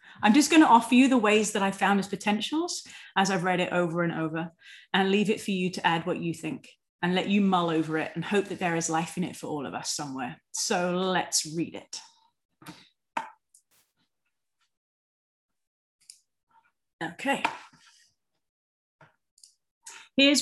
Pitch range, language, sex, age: 175-240 Hz, English, female, 30-49